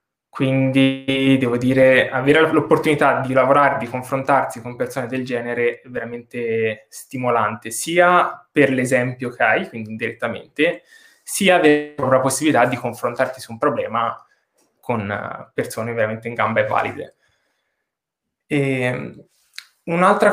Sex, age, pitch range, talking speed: male, 20-39, 120-150 Hz, 120 wpm